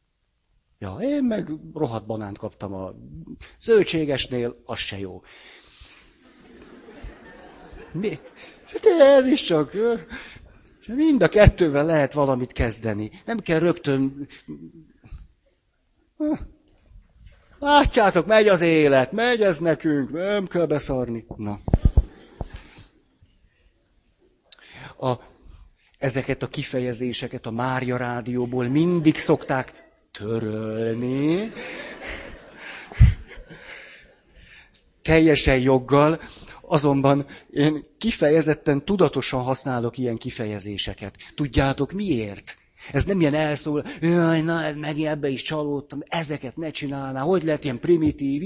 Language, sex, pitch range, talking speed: Hungarian, male, 125-160 Hz, 90 wpm